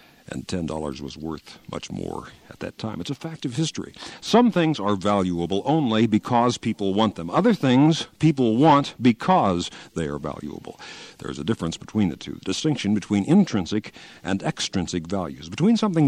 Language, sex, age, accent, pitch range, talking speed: English, male, 60-79, American, 90-150 Hz, 170 wpm